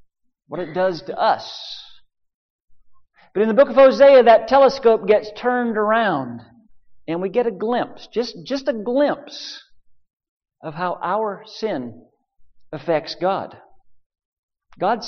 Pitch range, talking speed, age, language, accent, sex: 165-235 Hz, 125 wpm, 50-69, English, American, male